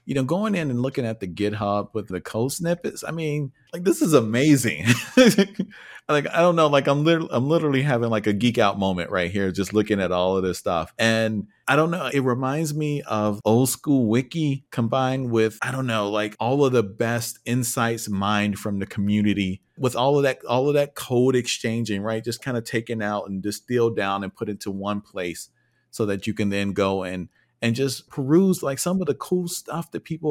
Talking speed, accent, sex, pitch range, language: 220 wpm, American, male, 100-145 Hz, English